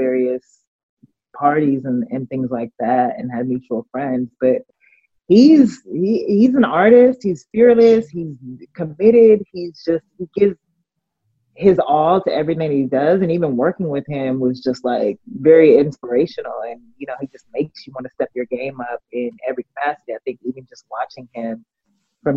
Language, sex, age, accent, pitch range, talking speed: English, female, 30-49, American, 135-200 Hz, 170 wpm